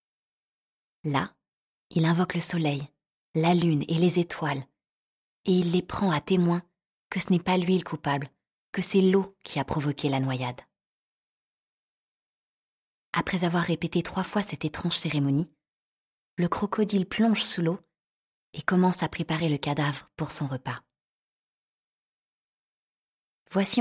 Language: French